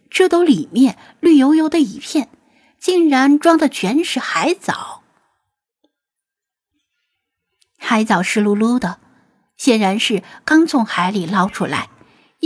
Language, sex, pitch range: Chinese, female, 205-300 Hz